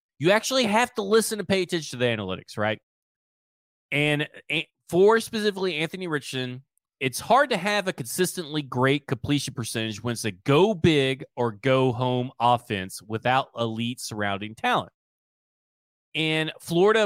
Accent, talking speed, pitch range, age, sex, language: American, 145 wpm, 120-165 Hz, 30-49, male, English